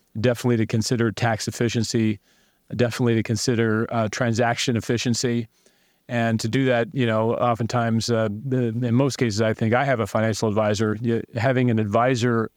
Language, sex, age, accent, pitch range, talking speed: English, male, 40-59, American, 110-125 Hz, 160 wpm